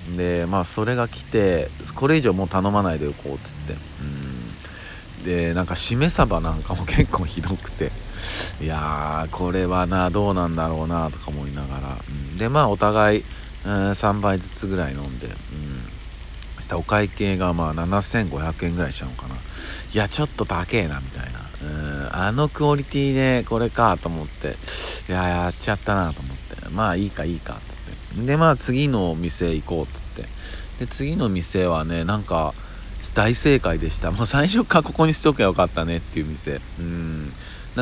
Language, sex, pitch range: Japanese, male, 80-105 Hz